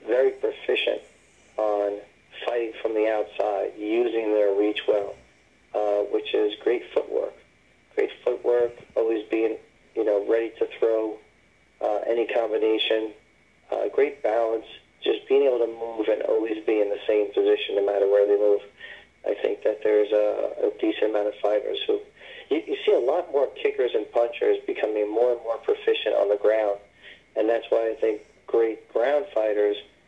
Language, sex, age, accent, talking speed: English, male, 40-59, American, 170 wpm